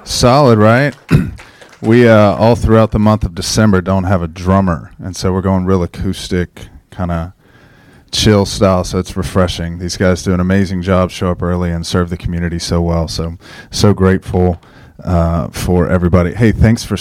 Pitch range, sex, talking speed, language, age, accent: 90-100 Hz, male, 180 wpm, English, 30-49, American